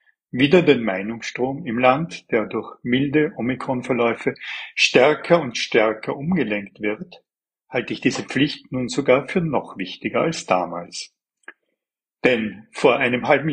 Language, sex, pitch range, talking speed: German, male, 115-145 Hz, 130 wpm